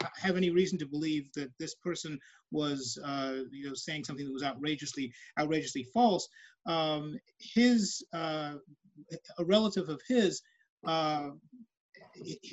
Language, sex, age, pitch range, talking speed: English, male, 30-49, 145-185 Hz, 130 wpm